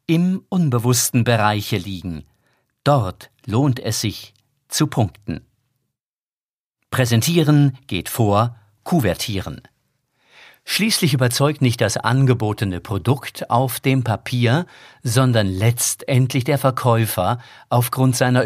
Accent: German